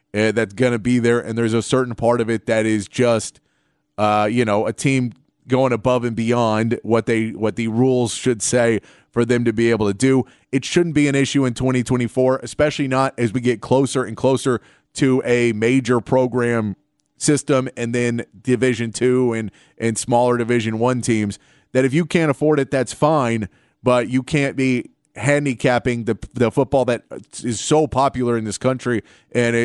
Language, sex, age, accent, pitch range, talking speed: English, male, 30-49, American, 115-130 Hz, 185 wpm